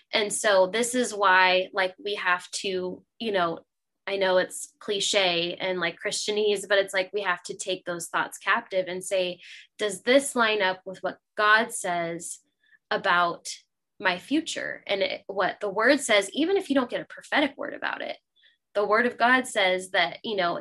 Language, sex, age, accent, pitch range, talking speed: English, female, 10-29, American, 185-215 Hz, 185 wpm